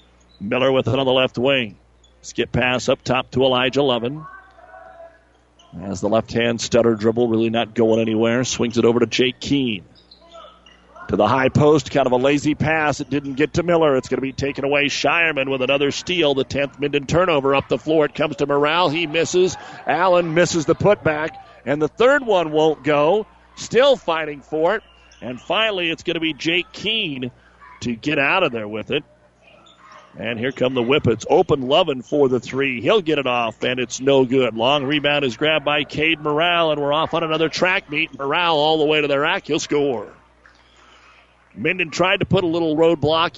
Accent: American